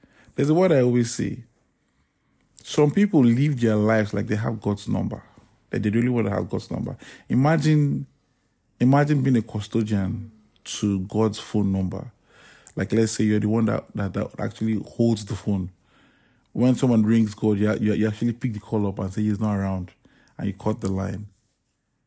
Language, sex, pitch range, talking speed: English, male, 105-125 Hz, 190 wpm